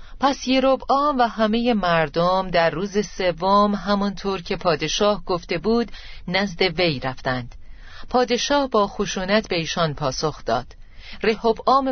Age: 40-59